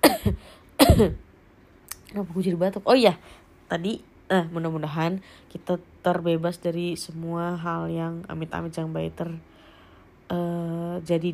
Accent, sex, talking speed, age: native, female, 100 wpm, 20-39